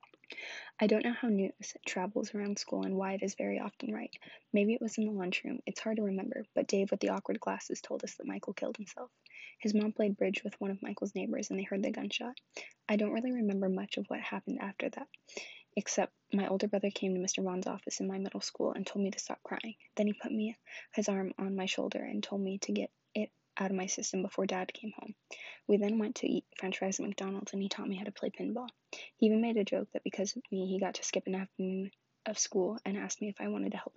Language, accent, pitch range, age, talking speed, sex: English, American, 190-230 Hz, 20-39, 260 wpm, female